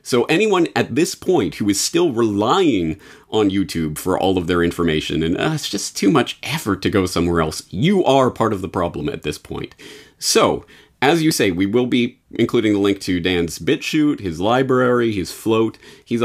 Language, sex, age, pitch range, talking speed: English, male, 30-49, 100-160 Hz, 205 wpm